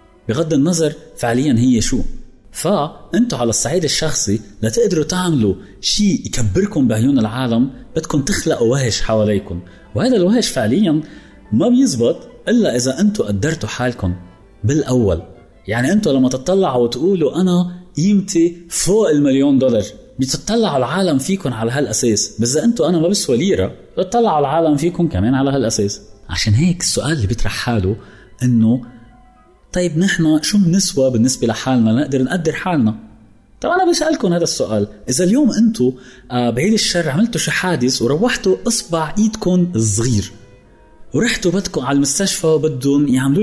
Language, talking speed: Arabic, 135 wpm